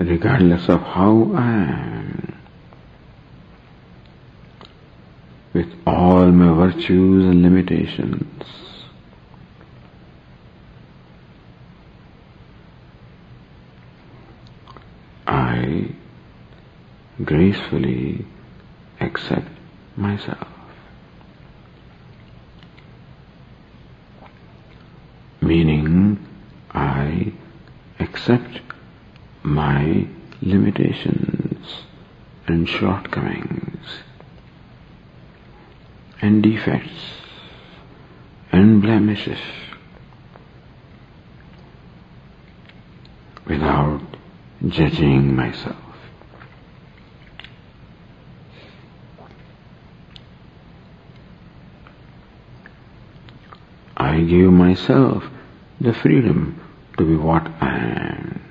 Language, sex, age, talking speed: English, male, 50-69, 40 wpm